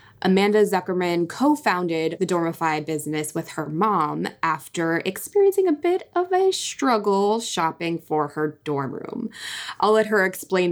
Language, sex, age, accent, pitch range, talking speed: English, female, 20-39, American, 160-205 Hz, 140 wpm